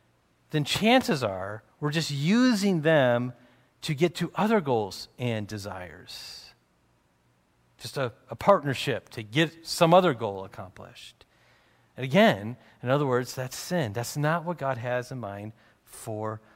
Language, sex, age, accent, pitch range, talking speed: English, male, 40-59, American, 110-150 Hz, 140 wpm